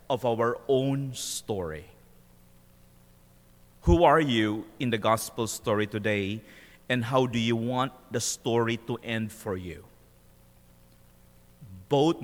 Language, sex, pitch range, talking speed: English, male, 85-125 Hz, 120 wpm